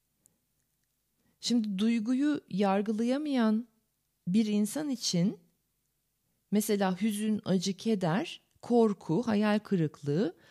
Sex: female